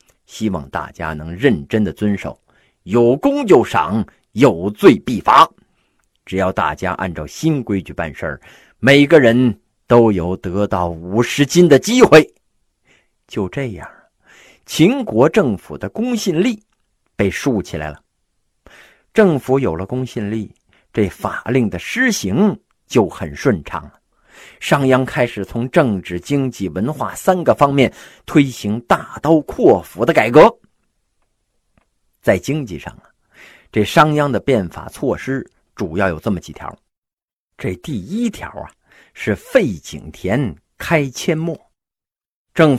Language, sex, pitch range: Chinese, male, 100-160 Hz